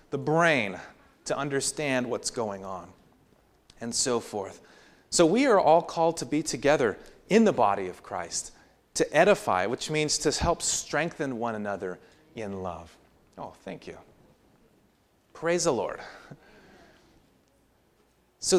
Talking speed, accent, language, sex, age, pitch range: 130 wpm, American, English, male, 30-49, 130-195 Hz